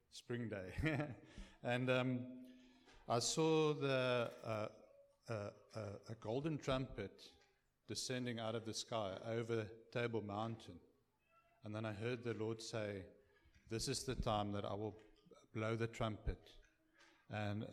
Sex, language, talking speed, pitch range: male, English, 130 wpm, 105-125 Hz